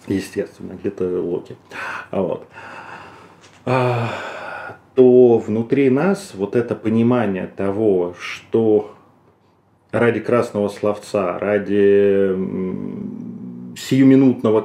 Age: 30-49